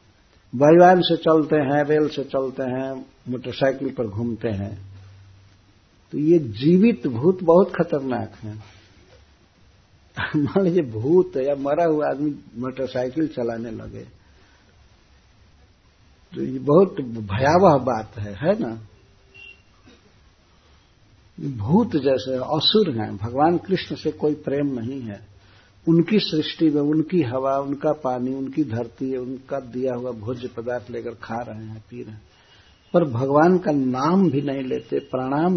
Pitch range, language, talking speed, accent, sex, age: 105-150 Hz, Hindi, 130 wpm, native, male, 60-79